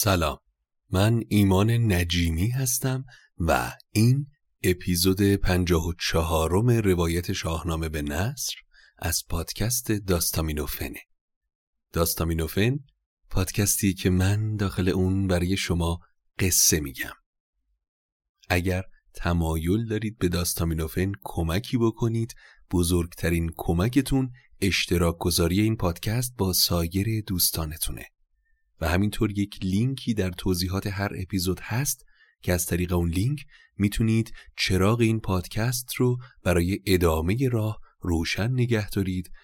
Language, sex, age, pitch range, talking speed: Persian, male, 30-49, 85-105 Hz, 105 wpm